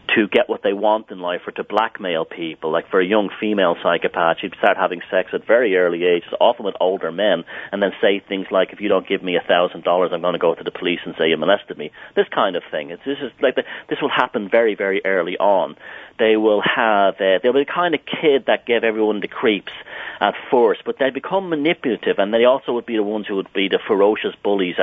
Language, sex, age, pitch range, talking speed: English, male, 40-59, 95-130 Hz, 250 wpm